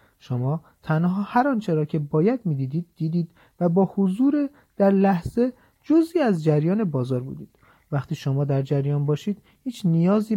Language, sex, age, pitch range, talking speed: Persian, male, 40-59, 140-210 Hz, 150 wpm